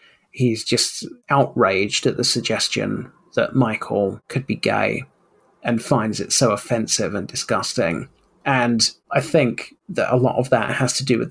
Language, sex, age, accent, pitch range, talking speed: English, male, 30-49, British, 115-130 Hz, 160 wpm